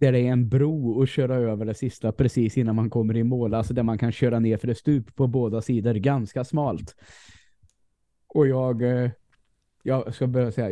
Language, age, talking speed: Swedish, 20-39, 205 wpm